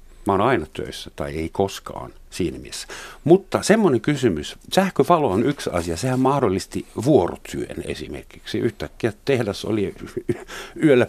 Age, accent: 60-79, native